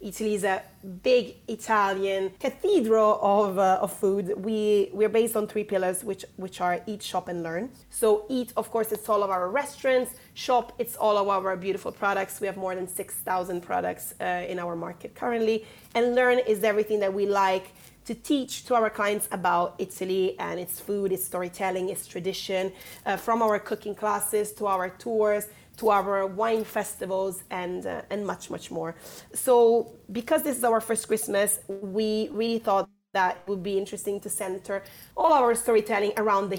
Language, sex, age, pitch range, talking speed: English, female, 30-49, 190-225 Hz, 180 wpm